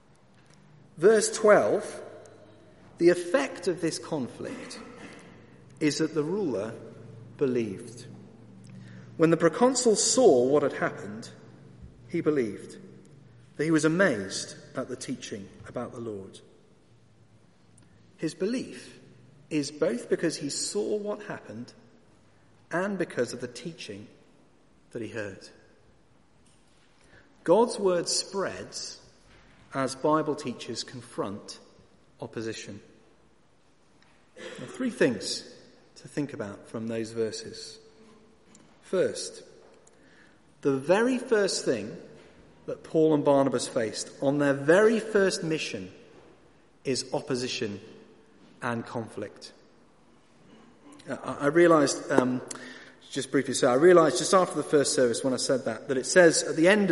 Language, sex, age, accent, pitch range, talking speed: English, male, 40-59, British, 125-185 Hz, 115 wpm